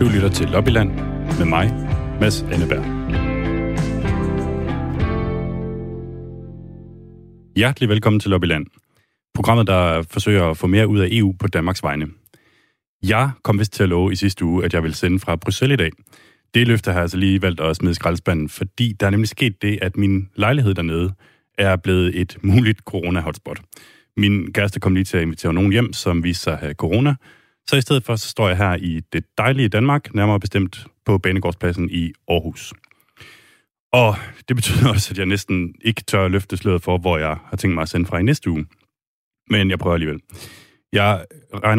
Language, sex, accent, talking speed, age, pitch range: Danish, male, native, 180 wpm, 30-49, 90-110 Hz